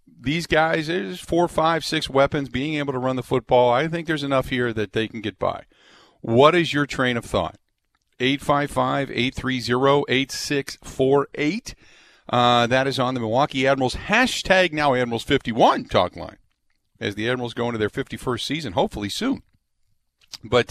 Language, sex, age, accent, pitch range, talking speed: English, male, 50-69, American, 105-140 Hz, 155 wpm